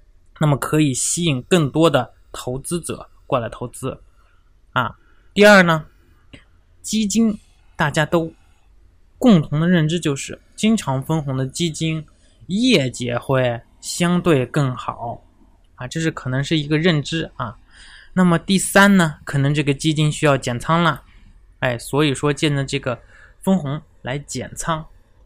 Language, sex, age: Chinese, male, 20-39